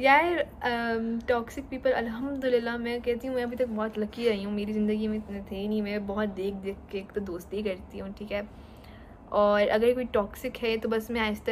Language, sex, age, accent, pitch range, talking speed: English, female, 10-29, Indian, 195-245 Hz, 145 wpm